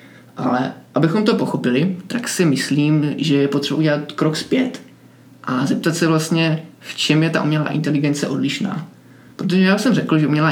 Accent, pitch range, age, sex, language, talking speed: native, 140-170 Hz, 20-39, male, Czech, 170 wpm